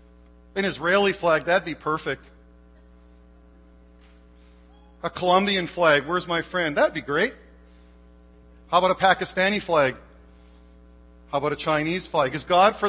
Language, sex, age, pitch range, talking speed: English, male, 50-69, 155-220 Hz, 130 wpm